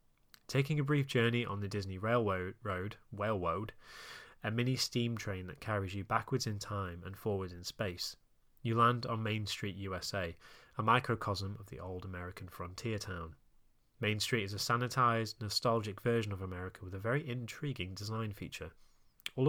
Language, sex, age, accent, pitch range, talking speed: English, male, 20-39, British, 95-120 Hz, 160 wpm